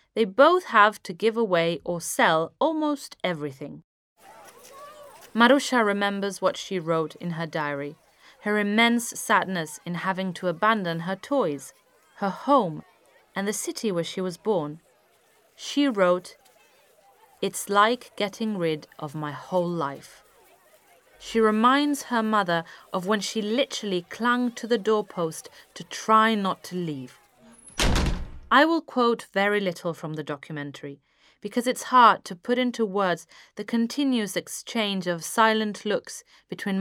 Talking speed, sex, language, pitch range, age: 140 wpm, female, English, 165-230 Hz, 30-49